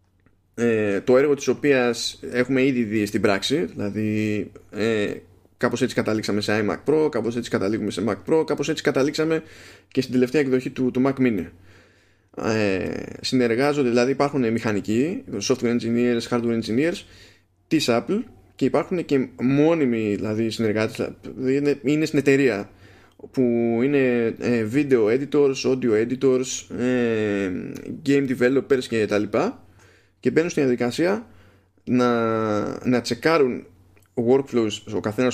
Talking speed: 130 wpm